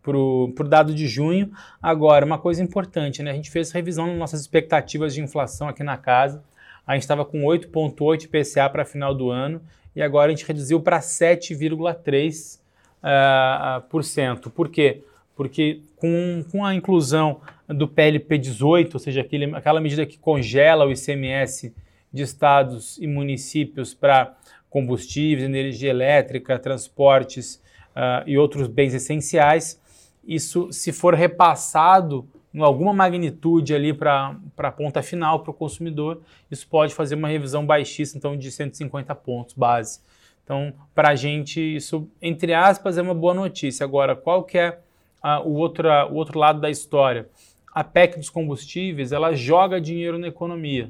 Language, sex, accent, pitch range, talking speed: Portuguese, male, Brazilian, 140-165 Hz, 150 wpm